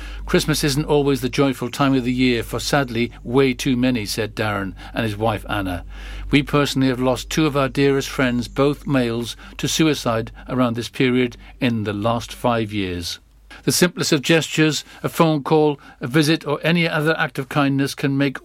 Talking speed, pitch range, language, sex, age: 190 wpm, 125-150 Hz, English, male, 50-69